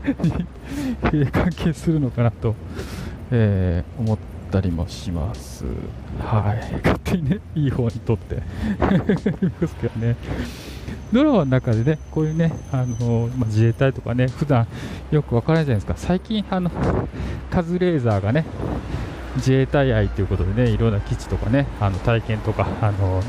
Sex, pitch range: male, 95-130 Hz